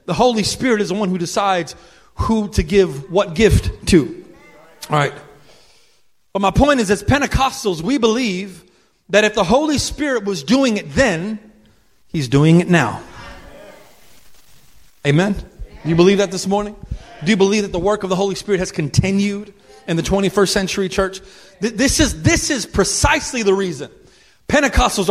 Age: 30-49